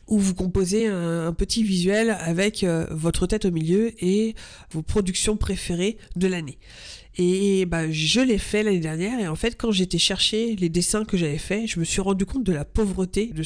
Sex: female